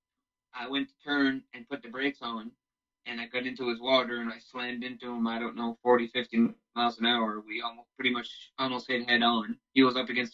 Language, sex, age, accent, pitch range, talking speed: English, male, 20-39, American, 120-140 Hz, 230 wpm